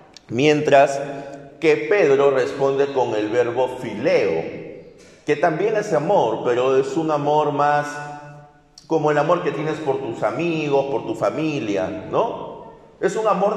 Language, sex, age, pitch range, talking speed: Spanish, male, 50-69, 135-190 Hz, 140 wpm